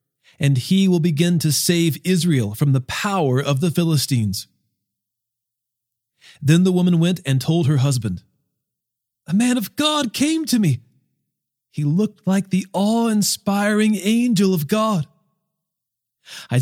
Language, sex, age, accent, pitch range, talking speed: English, male, 40-59, American, 140-200 Hz, 135 wpm